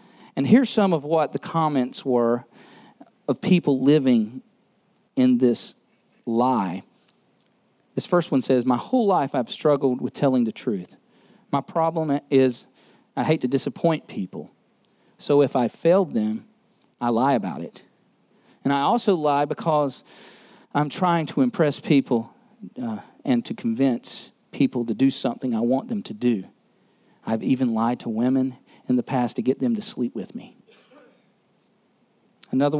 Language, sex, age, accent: English, male, 40-59, American